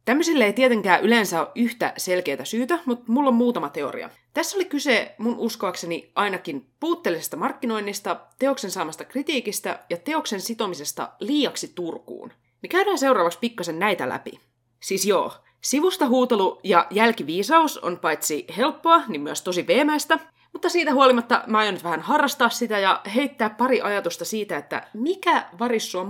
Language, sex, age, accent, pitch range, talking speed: Finnish, female, 30-49, native, 175-260 Hz, 150 wpm